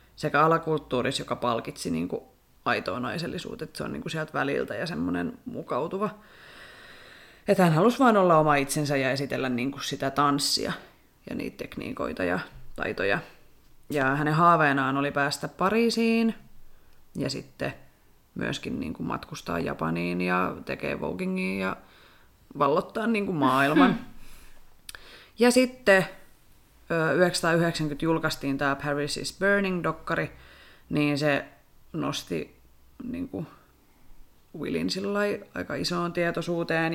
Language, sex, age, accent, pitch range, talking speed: Finnish, female, 30-49, native, 140-170 Hz, 120 wpm